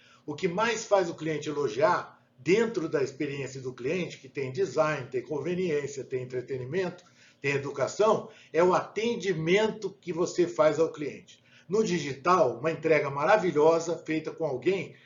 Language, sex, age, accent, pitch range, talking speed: Portuguese, male, 60-79, Brazilian, 150-205 Hz, 150 wpm